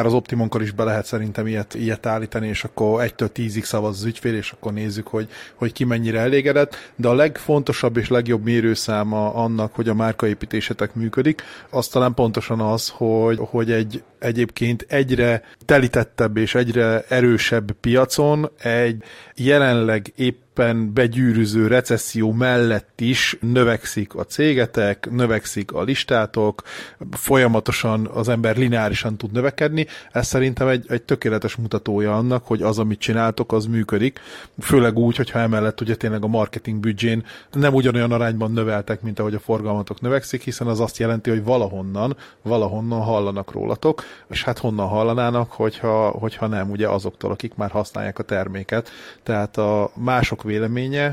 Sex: male